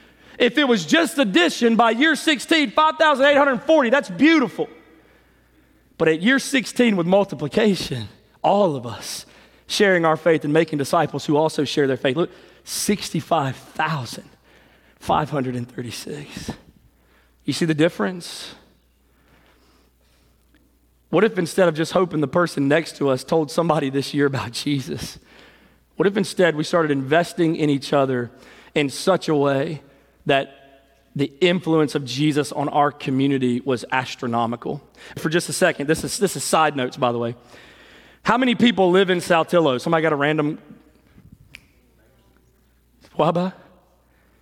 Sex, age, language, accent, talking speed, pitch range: male, 30-49, English, American, 135 wpm, 140-230 Hz